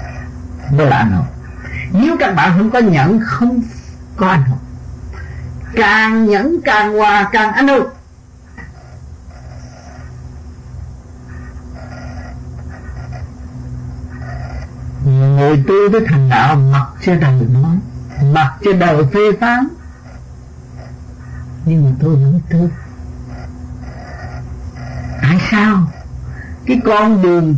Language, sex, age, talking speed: Vietnamese, male, 60-79, 90 wpm